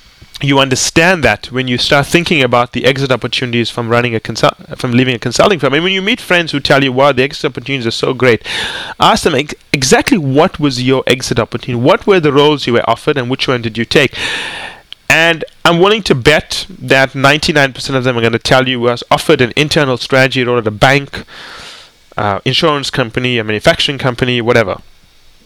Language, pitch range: English, 120-145 Hz